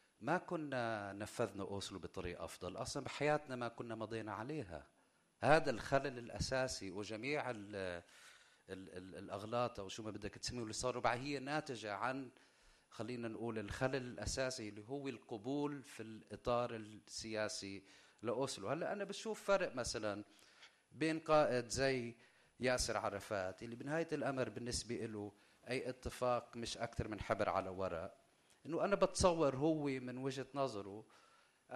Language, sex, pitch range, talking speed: English, male, 105-140 Hz, 130 wpm